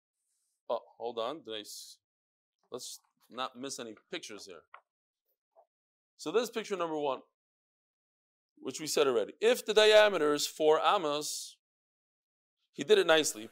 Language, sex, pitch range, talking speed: English, male, 140-230 Hz, 140 wpm